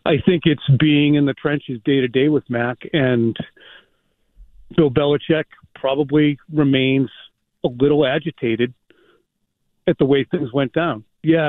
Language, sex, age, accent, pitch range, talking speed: English, male, 40-59, American, 125-165 Hz, 140 wpm